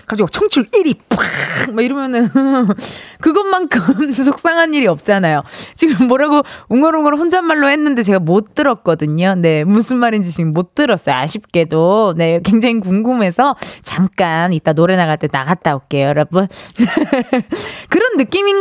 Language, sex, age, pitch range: Korean, female, 20-39, 185-315 Hz